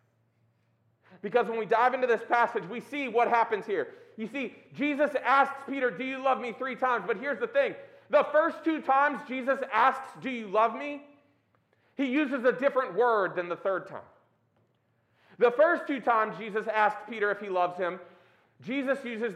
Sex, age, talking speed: male, 40-59, 185 wpm